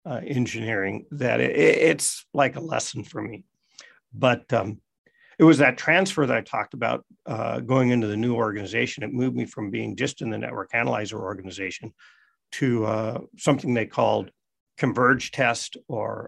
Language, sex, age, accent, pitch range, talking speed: English, male, 50-69, American, 110-135 Hz, 160 wpm